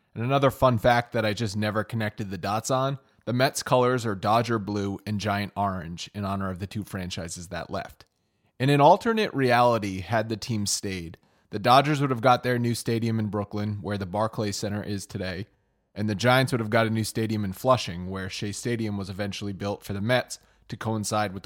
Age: 30-49